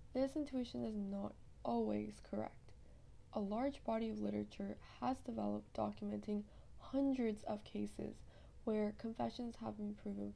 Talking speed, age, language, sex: 125 wpm, 10-29, English, female